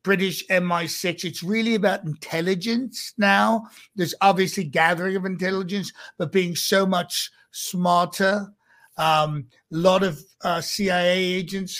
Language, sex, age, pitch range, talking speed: English, male, 60-79, 165-200 Hz, 125 wpm